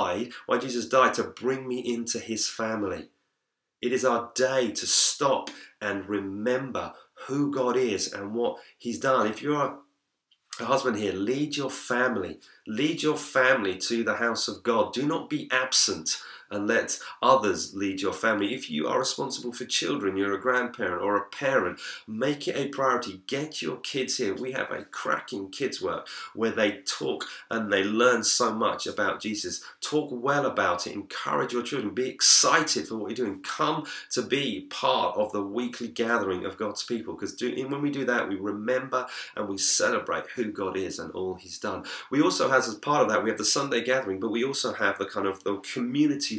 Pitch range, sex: 105-130 Hz, male